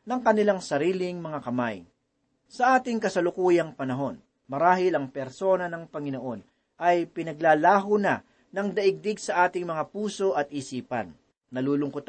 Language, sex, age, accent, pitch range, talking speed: Filipino, male, 40-59, native, 145-205 Hz, 130 wpm